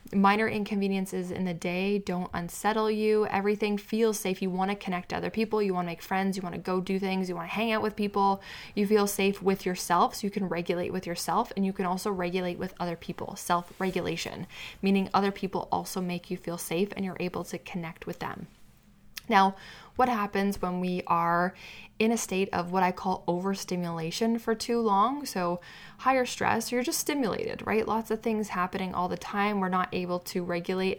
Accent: American